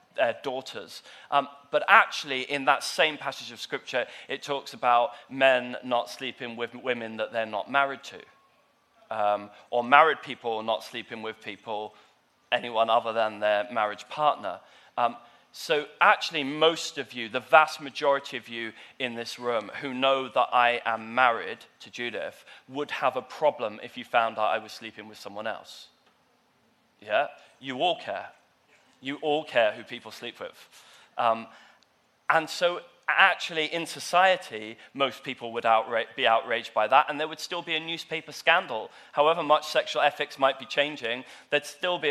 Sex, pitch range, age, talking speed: male, 120-150 Hz, 20-39, 165 wpm